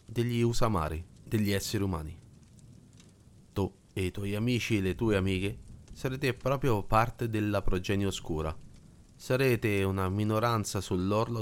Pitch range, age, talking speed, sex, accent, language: 95-120 Hz, 30-49, 125 wpm, male, native, Italian